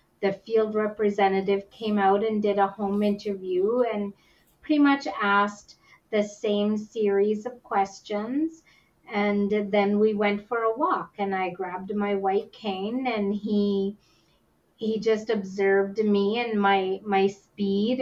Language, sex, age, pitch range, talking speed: English, female, 30-49, 195-220 Hz, 140 wpm